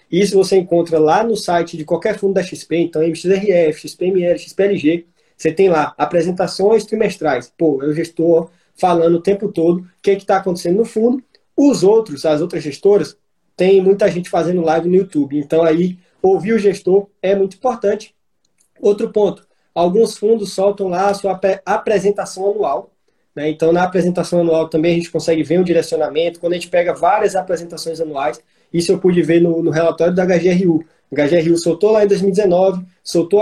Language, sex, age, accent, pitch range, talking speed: Portuguese, male, 20-39, Brazilian, 165-200 Hz, 185 wpm